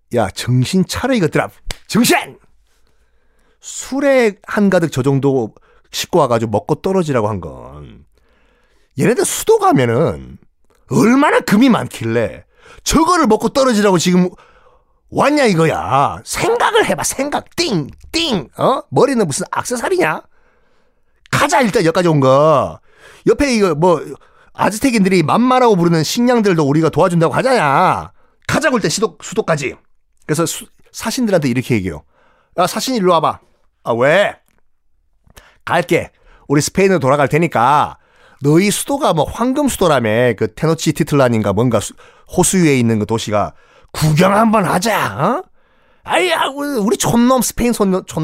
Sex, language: male, Korean